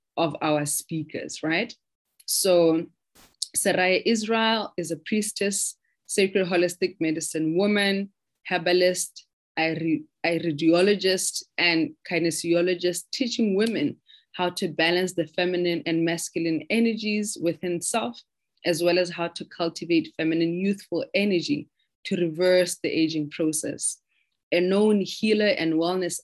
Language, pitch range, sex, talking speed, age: English, 165-200 Hz, female, 110 wpm, 20-39